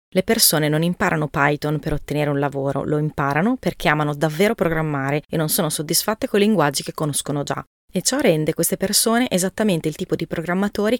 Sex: female